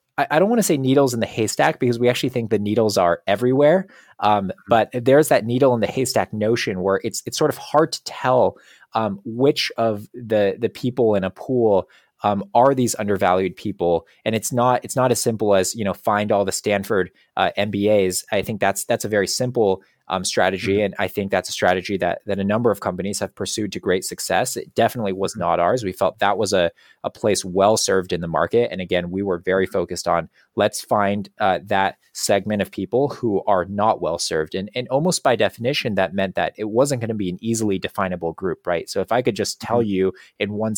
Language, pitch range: English, 95-120 Hz